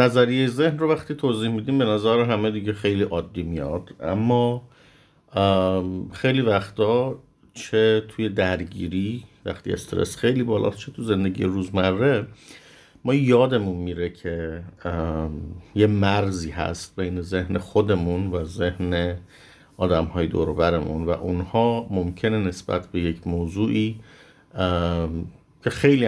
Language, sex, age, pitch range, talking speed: English, male, 50-69, 90-115 Hz, 115 wpm